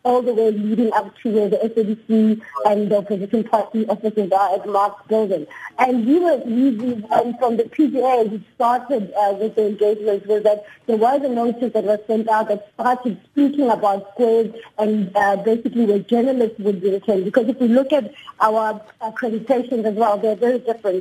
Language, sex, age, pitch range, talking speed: English, female, 30-49, 215-250 Hz, 200 wpm